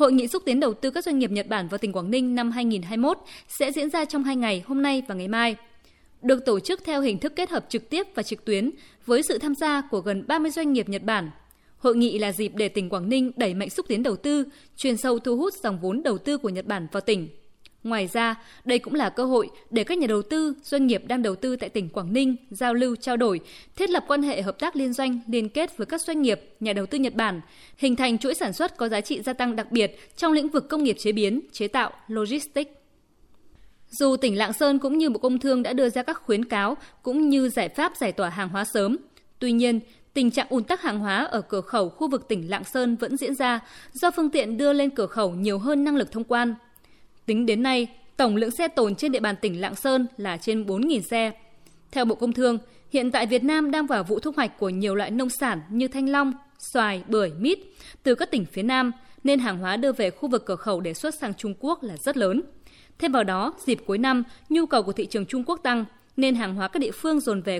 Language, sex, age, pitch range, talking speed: Vietnamese, female, 20-39, 215-280 Hz, 255 wpm